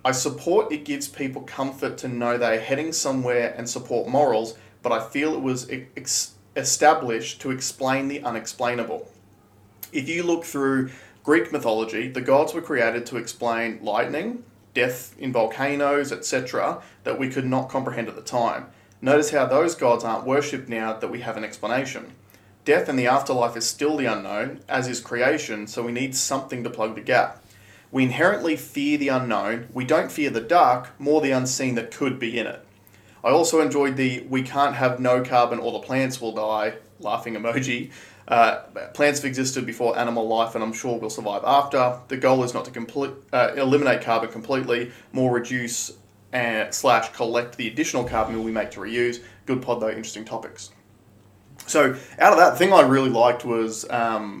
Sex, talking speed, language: male, 180 wpm, English